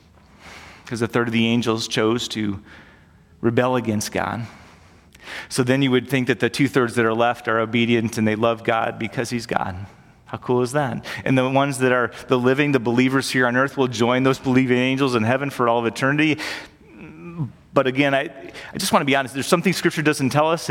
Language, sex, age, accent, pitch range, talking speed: English, male, 30-49, American, 120-155 Hz, 210 wpm